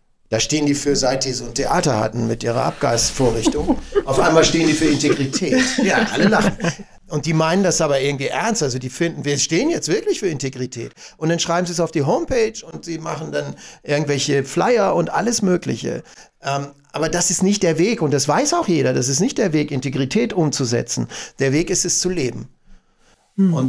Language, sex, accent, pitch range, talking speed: German, male, German, 135-170 Hz, 205 wpm